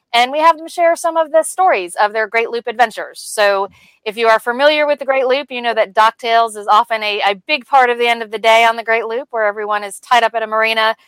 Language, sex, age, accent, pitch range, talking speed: English, female, 30-49, American, 220-270 Hz, 275 wpm